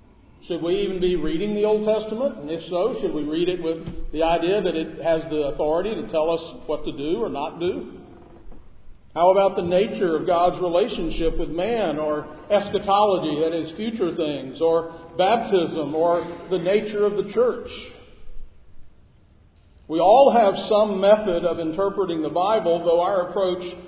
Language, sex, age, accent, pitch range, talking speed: English, male, 50-69, American, 160-200 Hz, 170 wpm